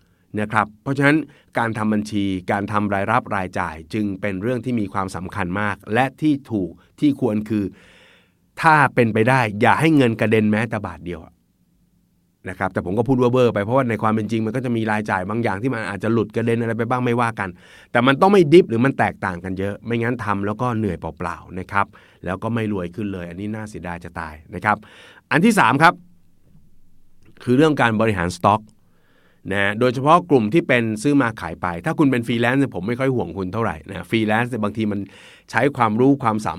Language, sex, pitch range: Thai, male, 95-125 Hz